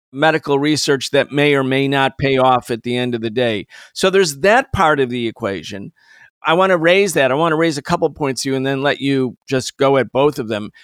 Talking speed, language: 255 wpm, English